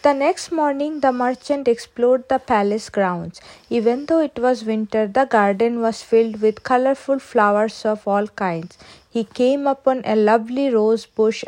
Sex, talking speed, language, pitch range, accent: female, 160 wpm, English, 220-295 Hz, Indian